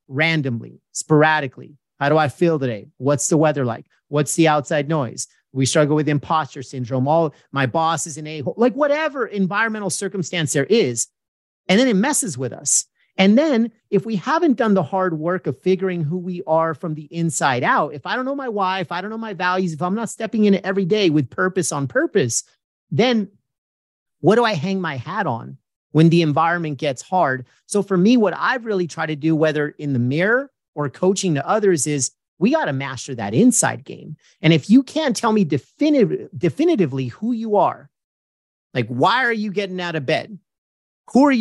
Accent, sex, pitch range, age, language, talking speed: American, male, 150-205 Hz, 40-59, English, 200 wpm